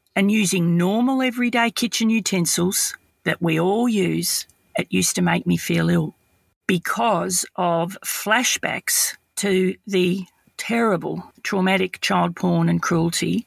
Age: 40-59